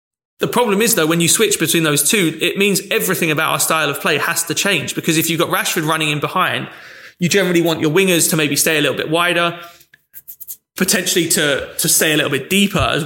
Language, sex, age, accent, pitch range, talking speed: English, male, 20-39, British, 145-175 Hz, 230 wpm